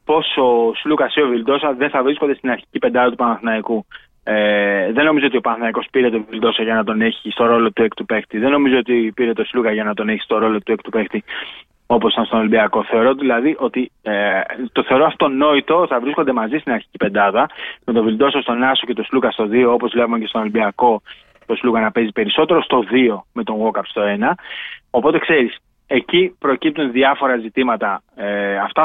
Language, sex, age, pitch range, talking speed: Greek, male, 20-39, 115-140 Hz, 210 wpm